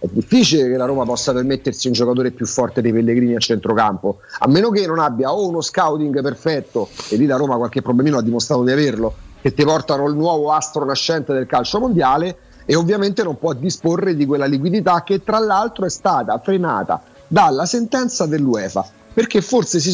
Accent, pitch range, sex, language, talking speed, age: native, 135-195 Hz, male, Italian, 195 wpm, 40-59